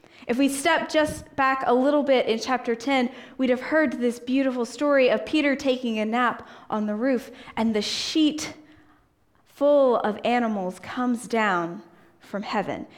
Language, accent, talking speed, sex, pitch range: English, American, 160 wpm, female, 210-285 Hz